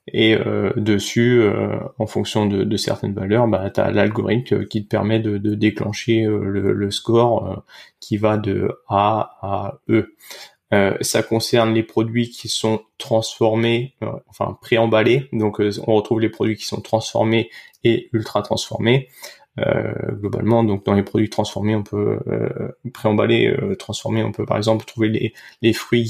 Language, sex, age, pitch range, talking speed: French, male, 20-39, 105-115 Hz, 145 wpm